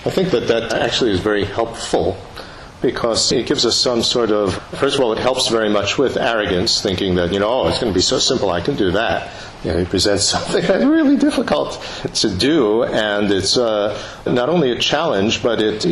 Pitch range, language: 90-125 Hz, English